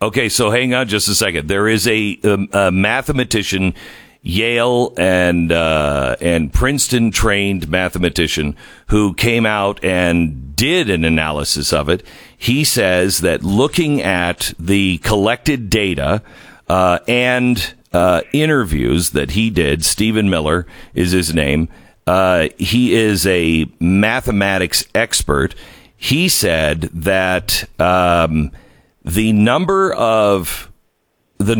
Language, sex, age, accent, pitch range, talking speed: English, male, 50-69, American, 85-120 Hz, 120 wpm